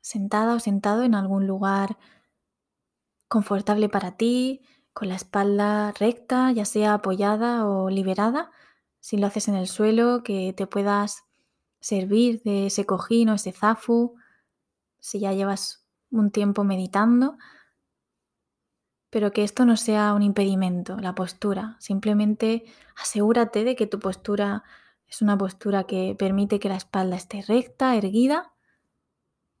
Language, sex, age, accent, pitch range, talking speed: English, female, 20-39, Spanish, 200-235 Hz, 135 wpm